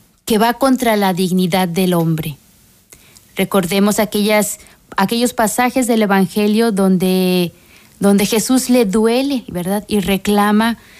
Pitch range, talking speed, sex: 175-220 Hz, 115 wpm, female